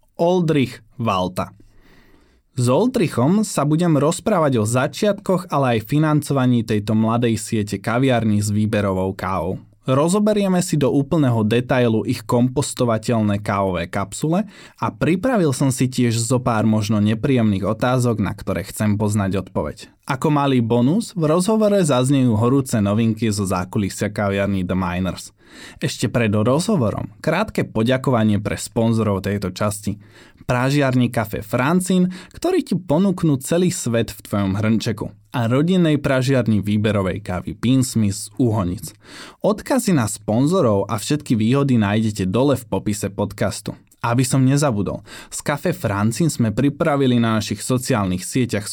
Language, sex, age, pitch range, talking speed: Slovak, male, 20-39, 105-140 Hz, 130 wpm